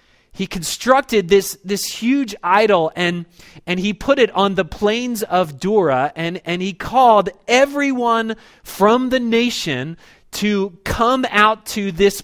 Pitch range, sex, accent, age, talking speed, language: 160-215 Hz, male, American, 30-49, 140 wpm, English